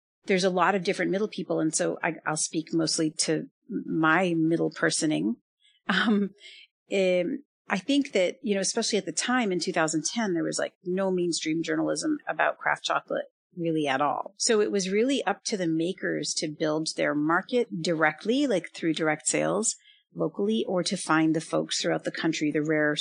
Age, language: 40-59, English